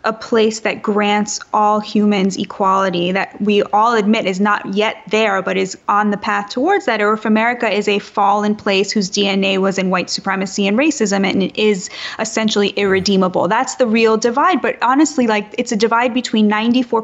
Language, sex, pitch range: English, female, 205-240 Hz